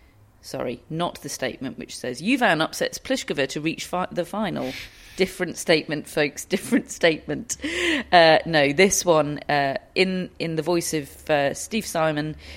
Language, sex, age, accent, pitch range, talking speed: English, female, 40-59, British, 150-185 Hz, 155 wpm